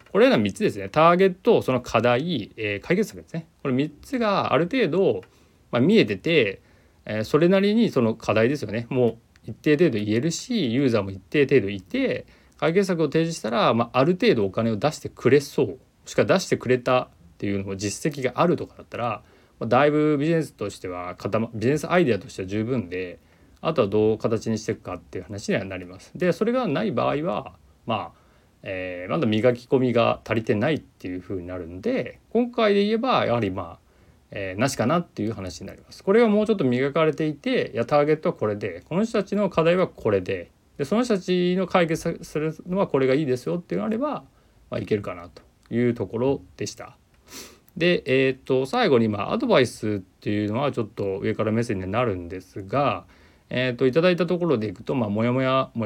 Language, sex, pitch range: Japanese, male, 105-165 Hz